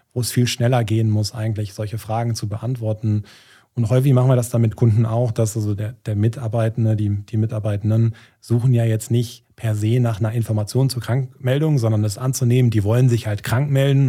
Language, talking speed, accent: German, 205 wpm, German